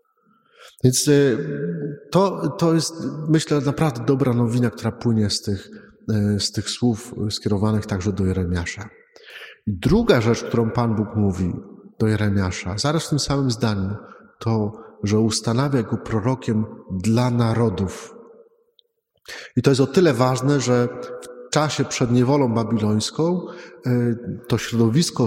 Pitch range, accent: 110-145 Hz, native